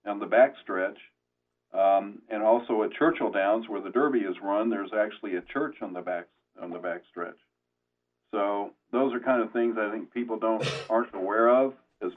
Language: English